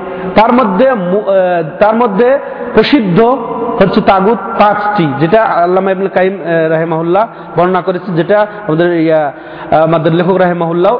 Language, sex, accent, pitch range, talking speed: Bengali, male, native, 180-225 Hz, 105 wpm